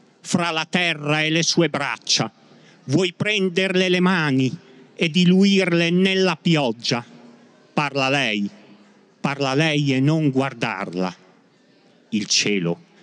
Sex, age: male, 50-69